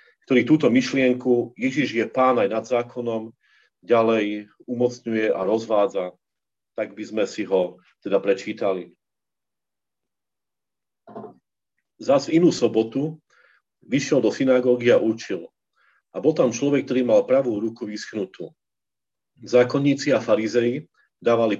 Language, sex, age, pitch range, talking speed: Slovak, male, 40-59, 115-140 Hz, 115 wpm